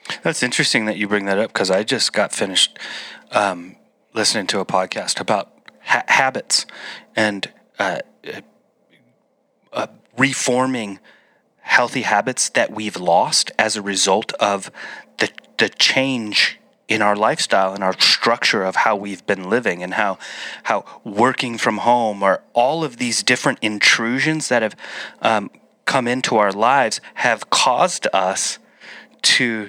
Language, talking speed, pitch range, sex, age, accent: English, 140 wpm, 100-120 Hz, male, 30-49, American